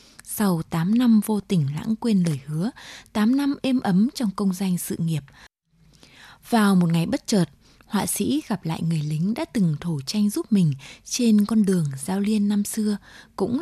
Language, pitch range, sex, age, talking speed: English, 170-235 Hz, female, 20-39, 190 wpm